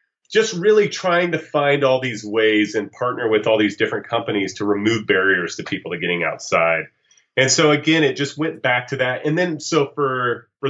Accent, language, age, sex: American, English, 30-49, male